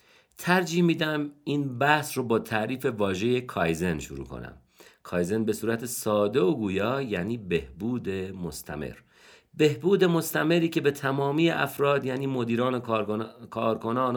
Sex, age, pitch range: male, 50-69, 100-135 Hz